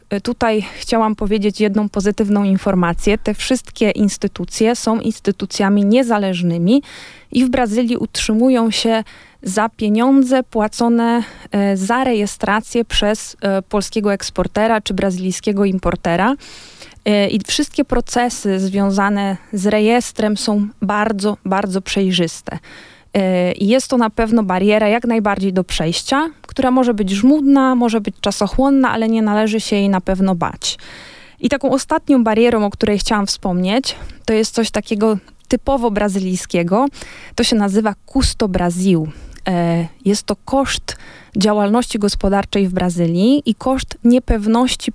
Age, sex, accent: 20-39, female, native